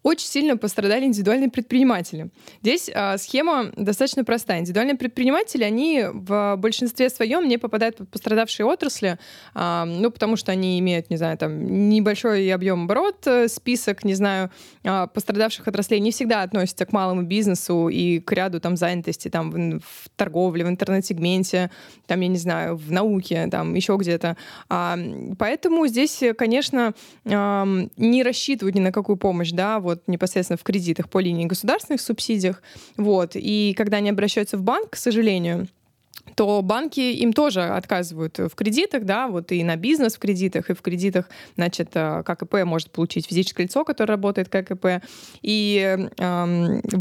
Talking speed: 155 wpm